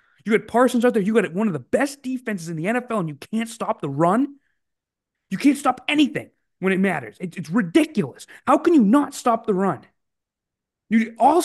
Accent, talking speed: American, 200 wpm